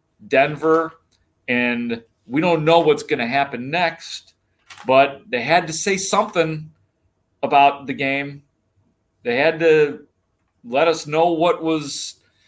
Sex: male